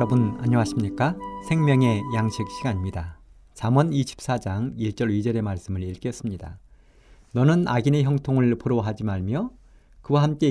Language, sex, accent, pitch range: Korean, male, native, 100-150 Hz